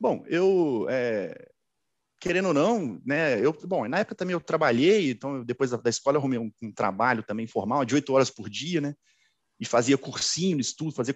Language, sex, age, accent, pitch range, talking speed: Portuguese, male, 40-59, Brazilian, 125-190 Hz, 200 wpm